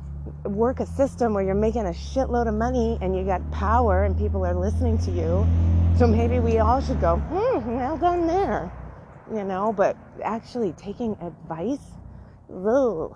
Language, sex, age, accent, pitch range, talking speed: English, female, 30-49, American, 165-260 Hz, 165 wpm